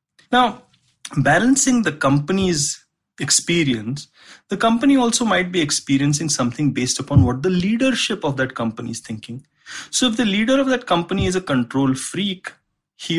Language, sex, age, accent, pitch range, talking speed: English, male, 30-49, Indian, 130-185 Hz, 155 wpm